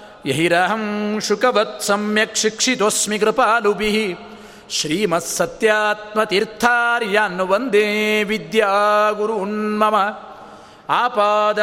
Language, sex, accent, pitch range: Kannada, male, native, 185-215 Hz